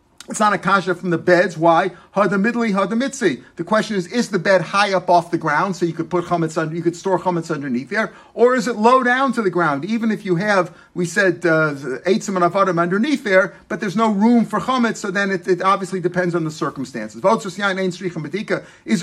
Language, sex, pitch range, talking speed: English, male, 170-200 Hz, 205 wpm